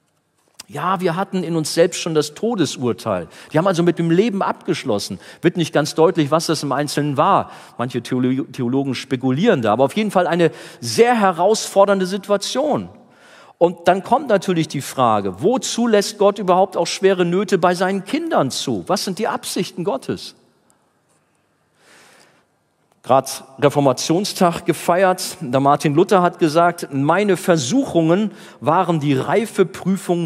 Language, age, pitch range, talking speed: German, 40-59, 135-185 Hz, 145 wpm